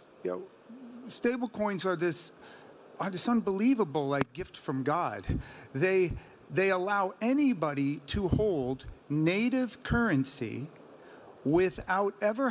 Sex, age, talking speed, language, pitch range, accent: male, 40-59, 110 wpm, English, 140-200 Hz, American